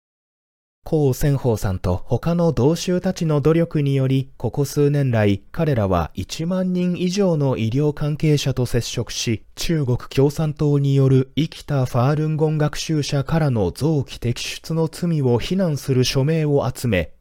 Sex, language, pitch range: male, Japanese, 110-175 Hz